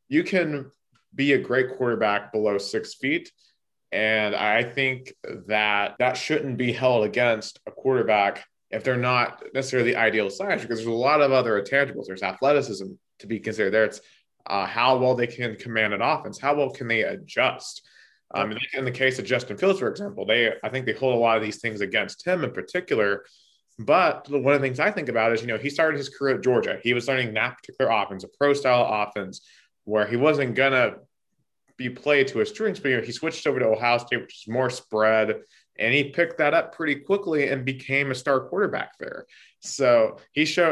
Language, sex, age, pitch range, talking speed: English, male, 30-49, 110-140 Hz, 210 wpm